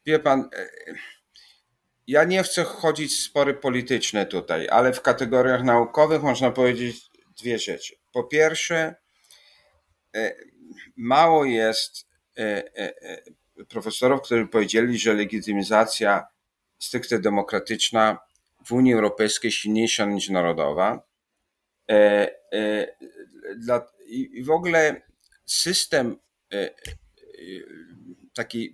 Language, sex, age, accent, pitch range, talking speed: Polish, male, 50-69, native, 110-140 Hz, 85 wpm